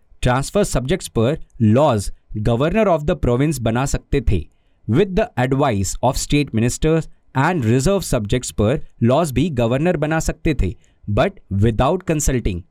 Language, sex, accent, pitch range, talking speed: Hindi, male, native, 110-155 Hz, 140 wpm